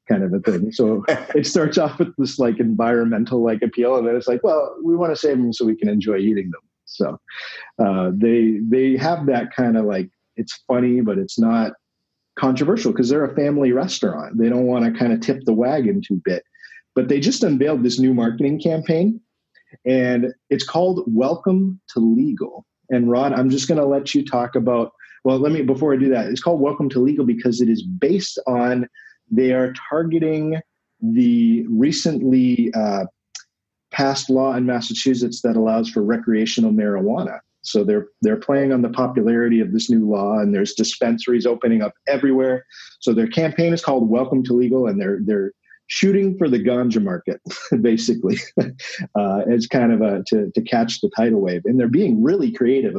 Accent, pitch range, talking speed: American, 120-160 Hz, 190 wpm